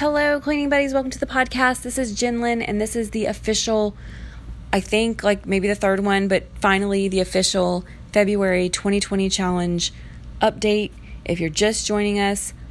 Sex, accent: female, American